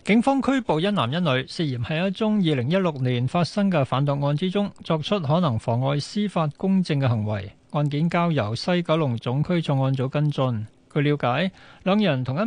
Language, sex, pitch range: Chinese, male, 130-170 Hz